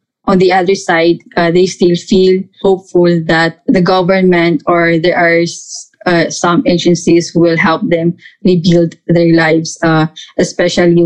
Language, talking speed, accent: English, 145 wpm, Filipino